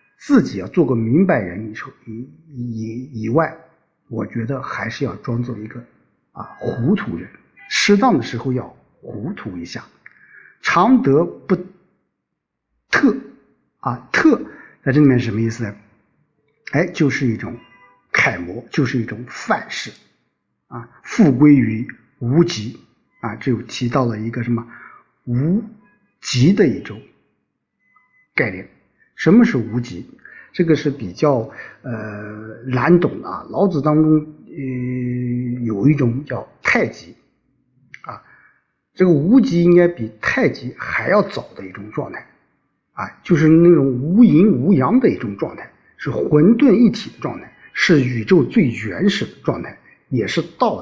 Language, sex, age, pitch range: Chinese, male, 50-69, 115-170 Hz